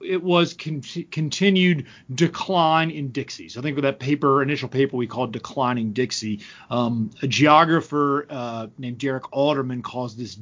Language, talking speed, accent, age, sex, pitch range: English, 155 wpm, American, 40-59, male, 130-160 Hz